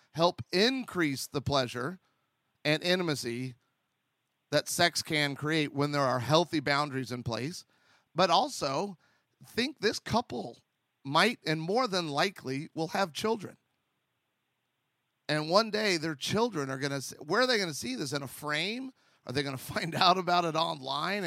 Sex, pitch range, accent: male, 130-175 Hz, American